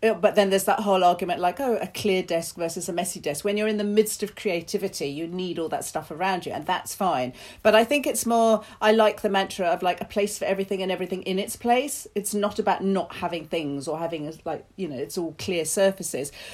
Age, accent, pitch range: 40-59, British, 185-235 Hz